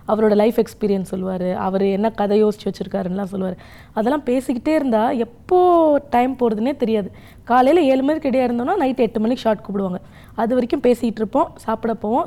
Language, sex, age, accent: Tamil, female, 20-39, native